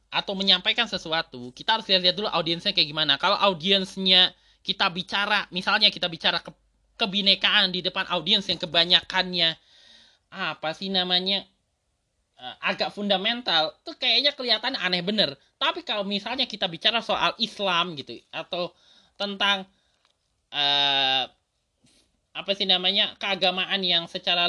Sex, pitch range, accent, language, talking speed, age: male, 180-235 Hz, native, Indonesian, 125 wpm, 20-39